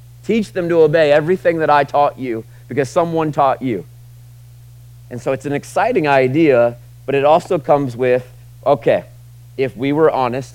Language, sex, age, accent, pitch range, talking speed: English, male, 30-49, American, 120-150 Hz, 165 wpm